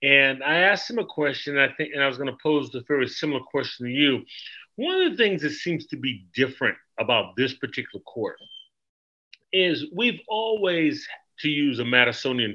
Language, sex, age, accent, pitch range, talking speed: English, male, 40-59, American, 125-165 Hz, 190 wpm